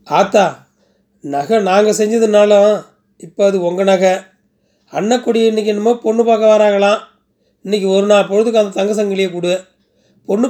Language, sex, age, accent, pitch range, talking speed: Tamil, male, 30-49, native, 185-215 Hz, 130 wpm